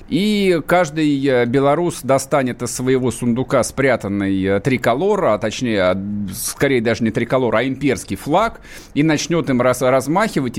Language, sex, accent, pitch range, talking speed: Russian, male, native, 125-175 Hz, 125 wpm